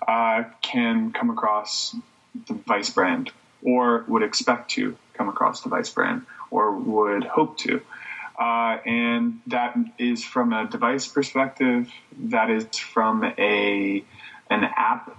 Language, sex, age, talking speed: English, male, 20-39, 135 wpm